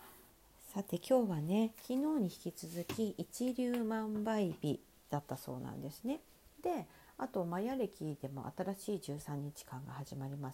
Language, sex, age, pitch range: Japanese, female, 50-69, 140-210 Hz